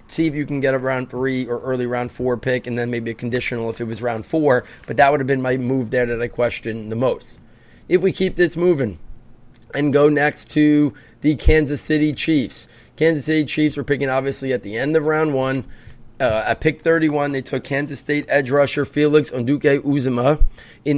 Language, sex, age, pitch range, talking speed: English, male, 30-49, 125-145 Hz, 215 wpm